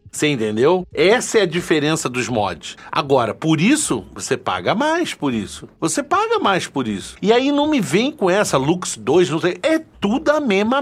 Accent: Brazilian